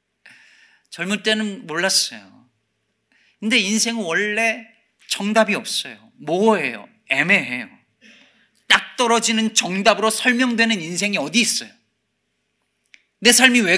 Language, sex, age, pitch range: Korean, male, 40-59, 150-230 Hz